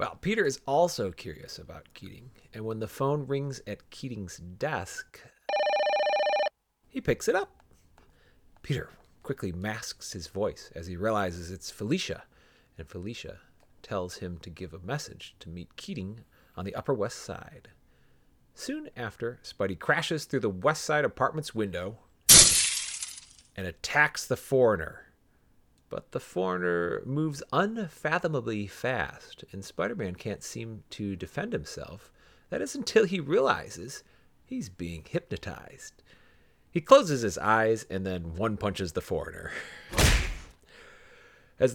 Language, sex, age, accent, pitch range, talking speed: English, male, 30-49, American, 95-155 Hz, 130 wpm